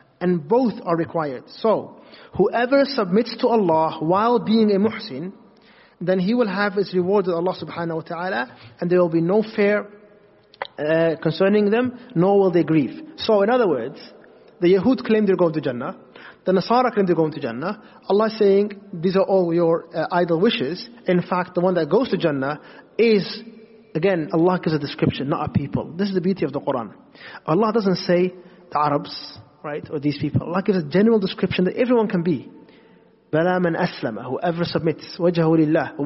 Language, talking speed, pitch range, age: English, 185 wpm, 165-215 Hz, 30-49